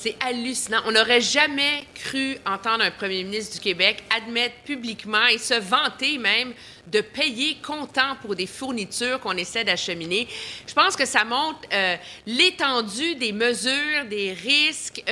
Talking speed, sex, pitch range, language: 150 wpm, female, 205-265 Hz, French